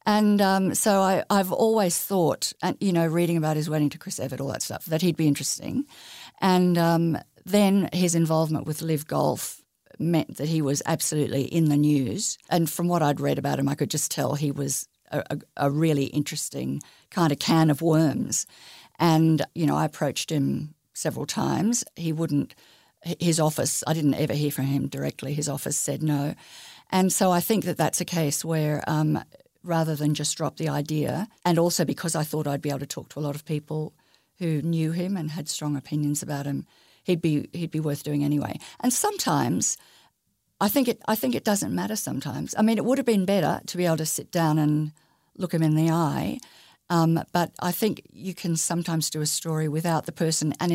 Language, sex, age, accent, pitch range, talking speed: English, female, 50-69, Australian, 150-180 Hz, 210 wpm